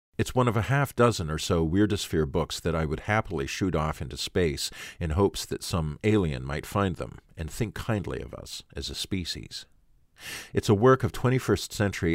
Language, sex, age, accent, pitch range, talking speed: English, male, 50-69, American, 80-100 Hz, 190 wpm